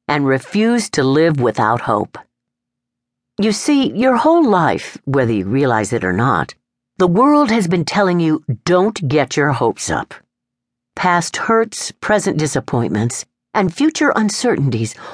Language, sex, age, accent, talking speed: English, female, 50-69, American, 140 wpm